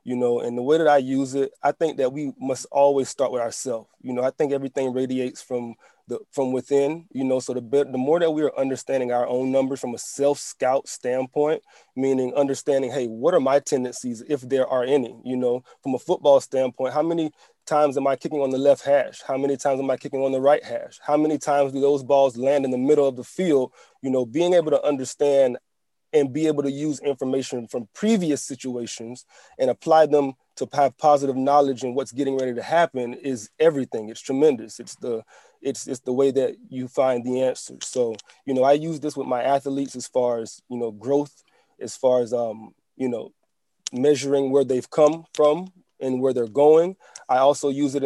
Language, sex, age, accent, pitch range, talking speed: English, male, 20-39, American, 125-145 Hz, 215 wpm